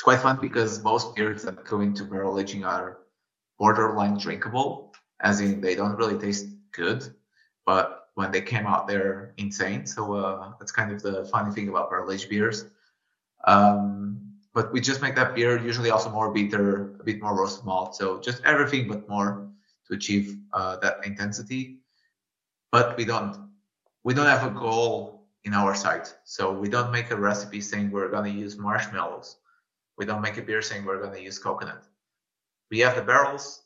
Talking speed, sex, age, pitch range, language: 185 wpm, male, 30-49, 100-115 Hz, English